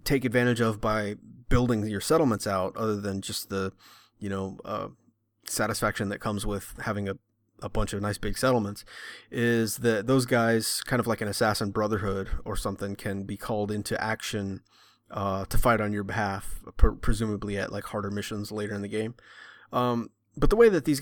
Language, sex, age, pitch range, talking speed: English, male, 30-49, 100-120 Hz, 185 wpm